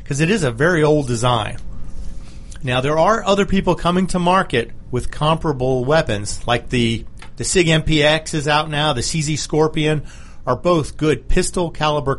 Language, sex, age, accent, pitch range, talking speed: English, male, 40-59, American, 115-160 Hz, 165 wpm